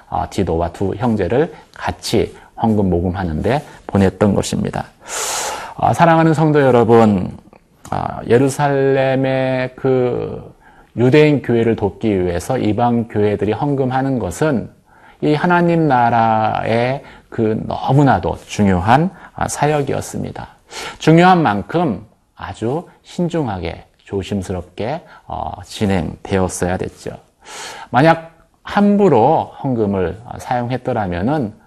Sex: male